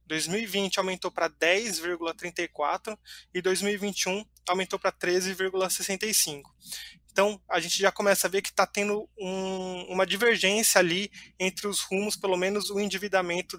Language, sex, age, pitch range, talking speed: Portuguese, male, 20-39, 170-195 Hz, 130 wpm